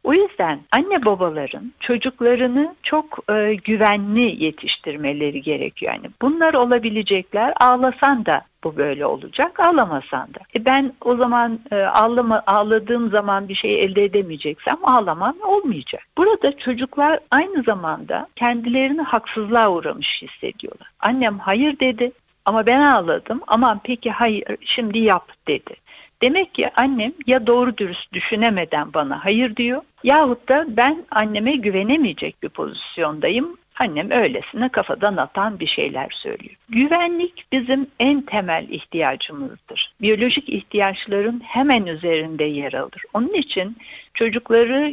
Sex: female